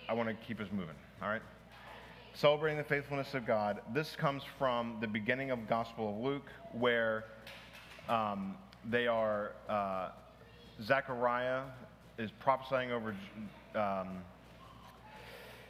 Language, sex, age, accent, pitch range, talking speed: English, male, 40-59, American, 105-130 Hz, 125 wpm